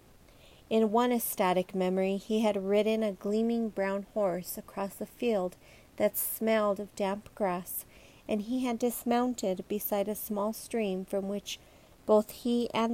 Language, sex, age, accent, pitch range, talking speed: English, female, 40-59, American, 190-225 Hz, 150 wpm